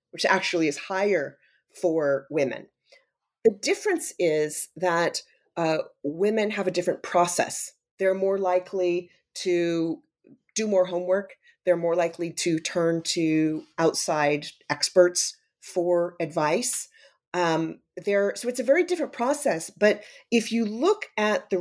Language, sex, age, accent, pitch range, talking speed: English, female, 40-59, American, 160-195 Hz, 130 wpm